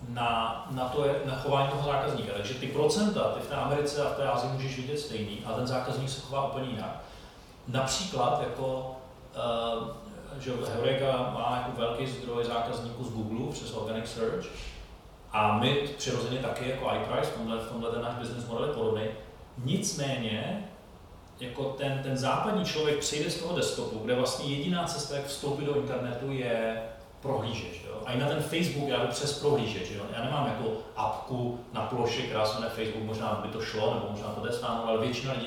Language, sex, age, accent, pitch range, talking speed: Czech, male, 30-49, native, 110-140 Hz, 180 wpm